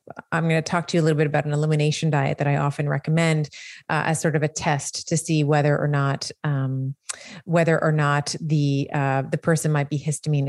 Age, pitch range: 30-49, 155-190 Hz